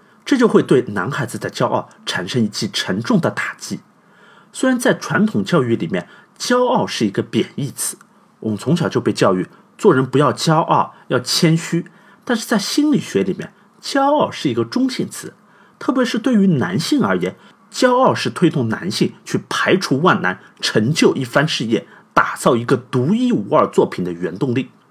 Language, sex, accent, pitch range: Chinese, male, native, 180-235 Hz